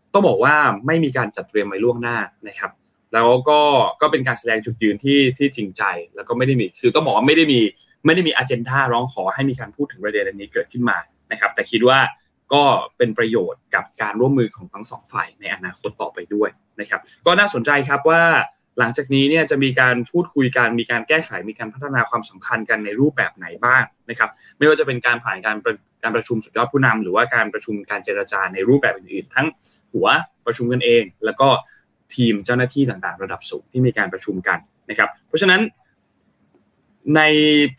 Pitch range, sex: 120-155 Hz, male